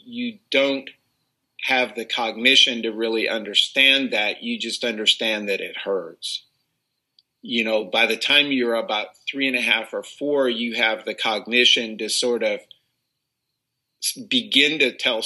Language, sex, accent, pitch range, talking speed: English, male, American, 105-135 Hz, 150 wpm